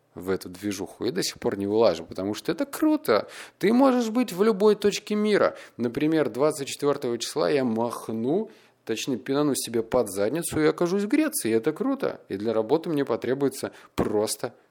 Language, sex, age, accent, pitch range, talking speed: Russian, male, 20-39, native, 105-160 Hz, 170 wpm